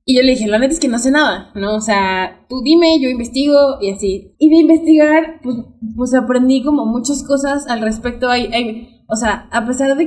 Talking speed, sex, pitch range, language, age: 225 wpm, female, 210-250 Hz, Spanish, 20-39